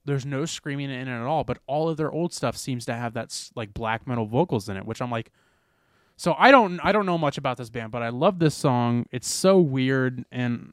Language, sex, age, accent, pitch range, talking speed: English, male, 20-39, American, 105-135 Hz, 255 wpm